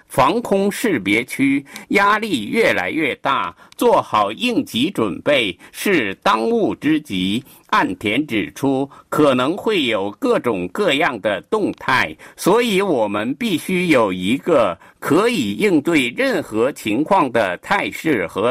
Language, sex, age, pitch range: Chinese, male, 50-69, 170-255 Hz